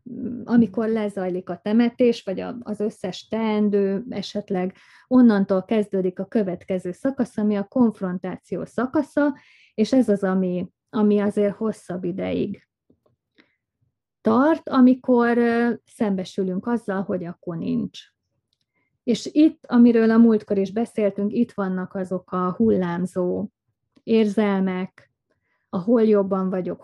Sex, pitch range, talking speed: female, 190-225 Hz, 110 wpm